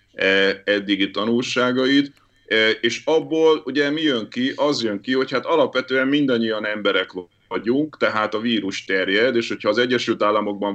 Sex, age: male, 30-49